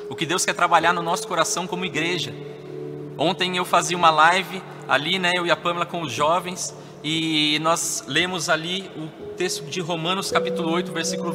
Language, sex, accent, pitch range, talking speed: Portuguese, male, Brazilian, 155-195 Hz, 185 wpm